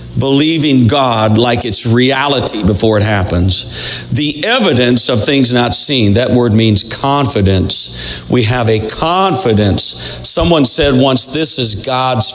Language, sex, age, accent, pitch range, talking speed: English, male, 50-69, American, 95-130 Hz, 135 wpm